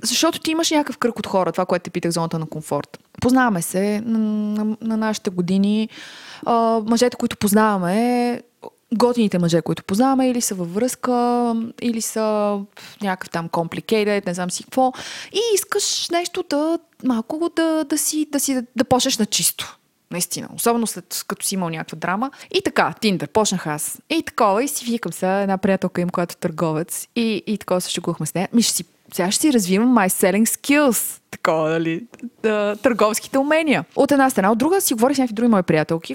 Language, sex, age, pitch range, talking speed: Bulgarian, female, 20-39, 180-245 Hz, 185 wpm